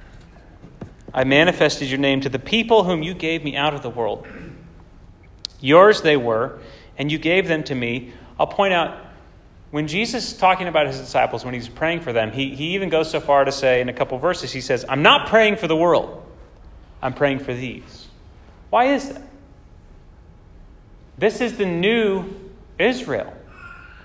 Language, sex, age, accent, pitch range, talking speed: English, male, 30-49, American, 120-190 Hz, 175 wpm